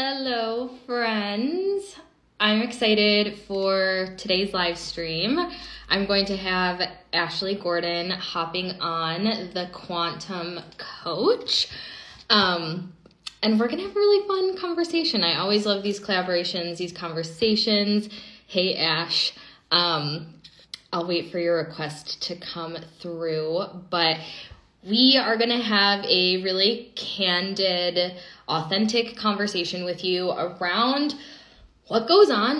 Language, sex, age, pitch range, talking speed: English, female, 10-29, 165-205 Hz, 120 wpm